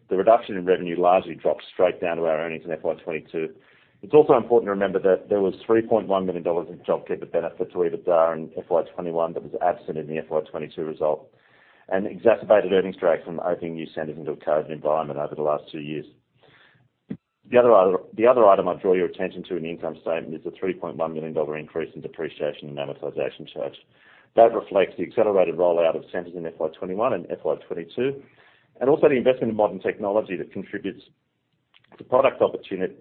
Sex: male